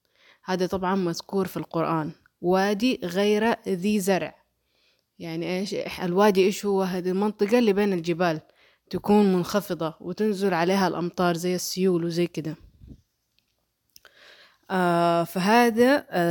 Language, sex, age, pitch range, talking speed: Arabic, female, 20-39, 180-215 Hz, 115 wpm